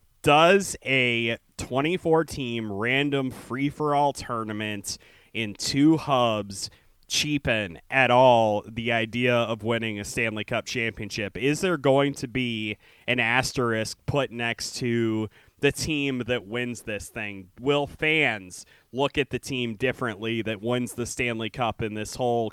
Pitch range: 115-135 Hz